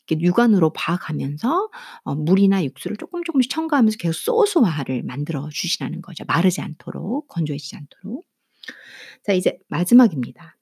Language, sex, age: Korean, female, 50-69